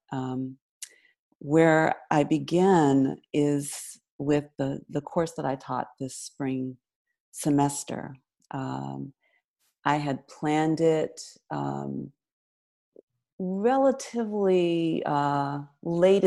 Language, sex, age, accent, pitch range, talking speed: English, female, 40-59, American, 125-150 Hz, 90 wpm